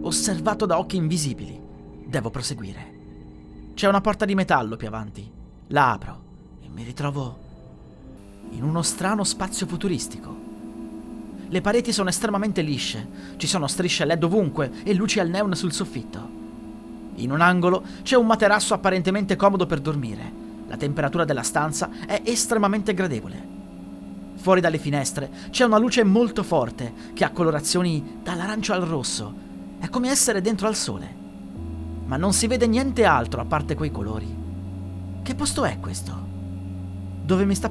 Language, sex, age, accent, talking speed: Italian, male, 30-49, native, 150 wpm